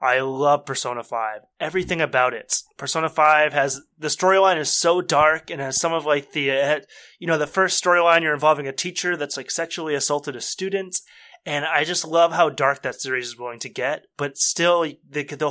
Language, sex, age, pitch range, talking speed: English, male, 20-39, 135-165 Hz, 200 wpm